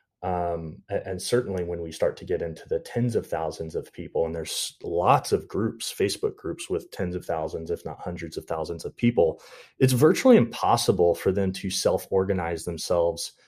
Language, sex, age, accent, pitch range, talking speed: English, male, 30-49, American, 90-130 Hz, 185 wpm